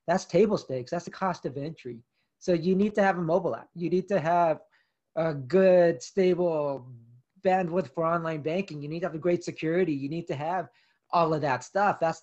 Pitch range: 145-180 Hz